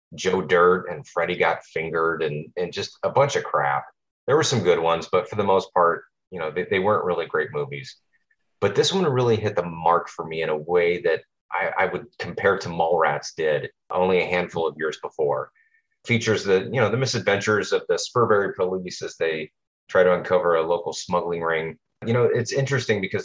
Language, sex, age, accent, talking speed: English, male, 30-49, American, 210 wpm